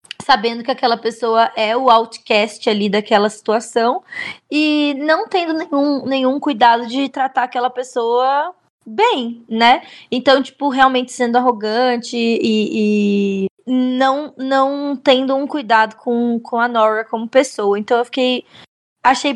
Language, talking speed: Portuguese, 135 wpm